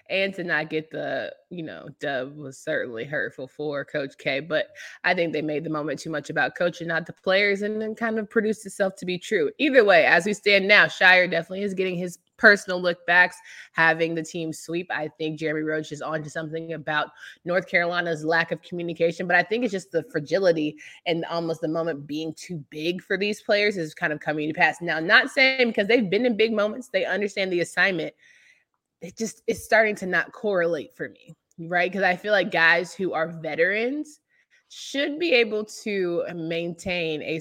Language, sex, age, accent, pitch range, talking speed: English, female, 20-39, American, 160-195 Hz, 205 wpm